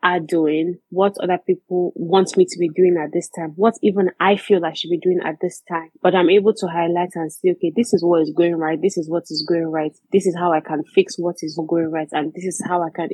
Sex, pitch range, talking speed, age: female, 165-185 Hz, 270 wpm, 20-39